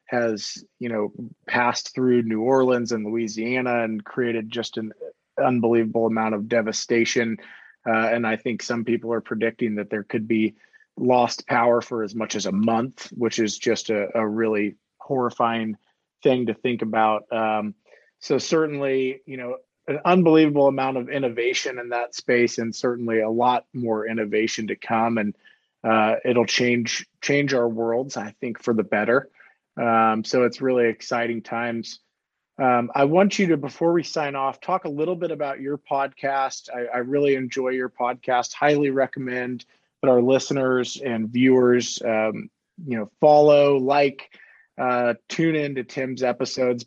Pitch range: 115-140 Hz